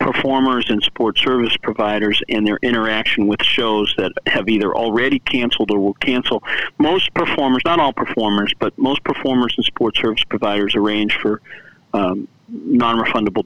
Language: English